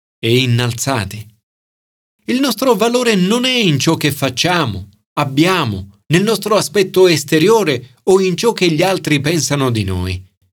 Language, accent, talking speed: Italian, native, 140 wpm